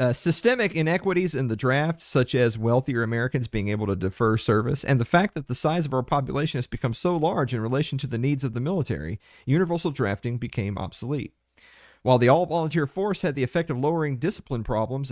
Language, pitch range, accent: English, 115-155 Hz, American